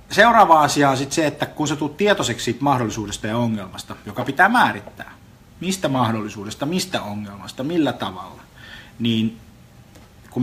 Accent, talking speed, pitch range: native, 140 wpm, 105-130 Hz